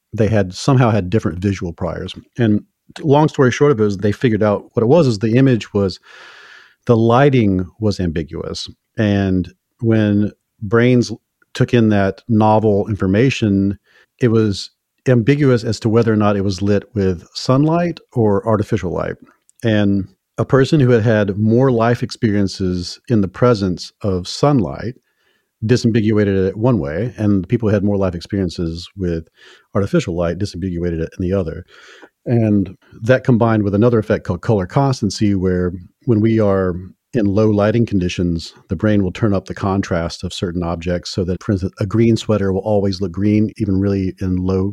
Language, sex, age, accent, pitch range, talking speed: English, male, 40-59, American, 95-115 Hz, 170 wpm